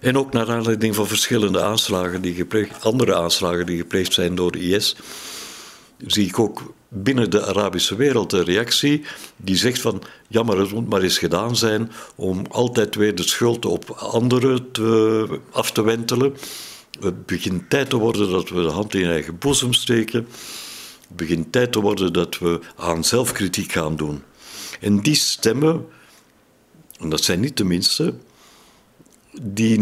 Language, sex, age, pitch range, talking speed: Dutch, male, 60-79, 95-125 Hz, 160 wpm